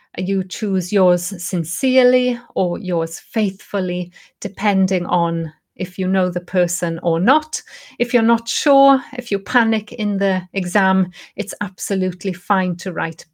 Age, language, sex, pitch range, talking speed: 30-49, English, female, 190-255 Hz, 140 wpm